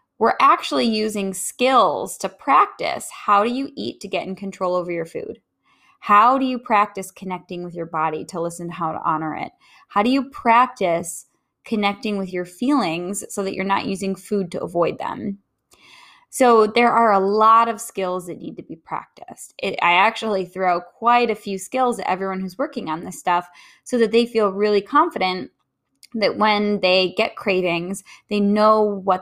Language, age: English, 10-29